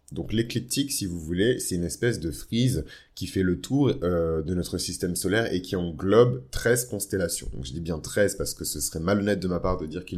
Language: French